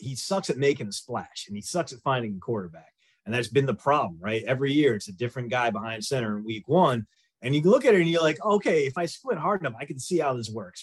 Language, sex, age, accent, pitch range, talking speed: English, male, 30-49, American, 115-155 Hz, 285 wpm